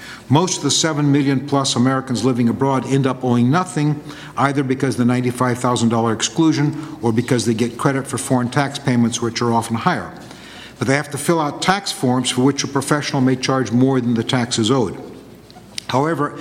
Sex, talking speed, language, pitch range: male, 190 wpm, English, 125-145 Hz